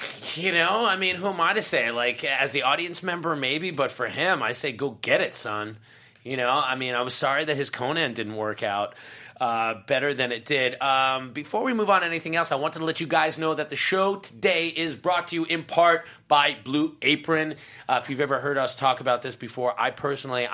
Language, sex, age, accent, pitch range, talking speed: English, male, 30-49, American, 135-165 Hz, 240 wpm